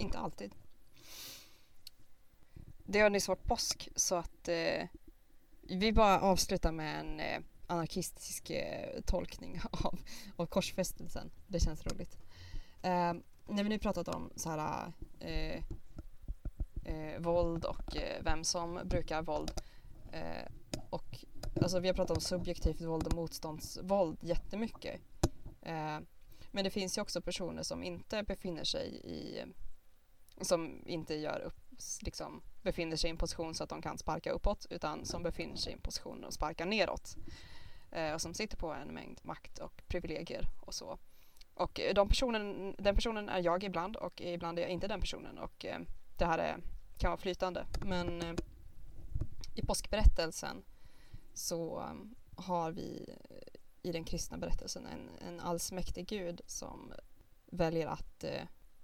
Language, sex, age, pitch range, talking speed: Swedish, female, 20-39, 160-185 Hz, 150 wpm